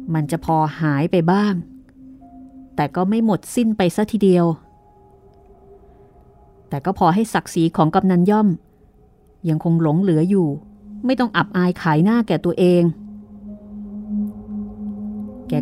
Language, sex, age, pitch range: Thai, female, 30-49, 160-260 Hz